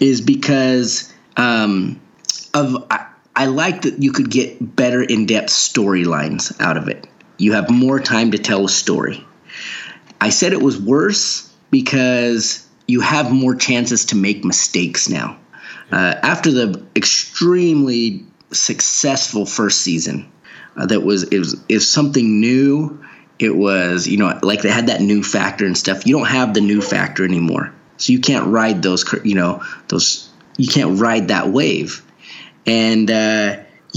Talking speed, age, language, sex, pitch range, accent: 155 wpm, 30-49, English, male, 105-130 Hz, American